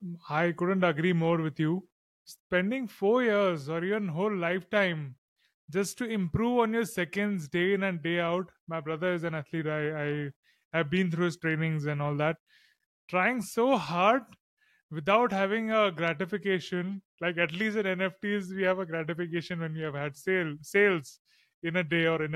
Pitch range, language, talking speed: 165-195 Hz, English, 175 wpm